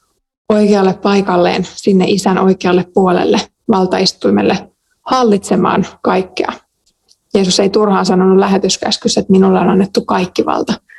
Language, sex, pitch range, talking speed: Finnish, female, 185-220 Hz, 110 wpm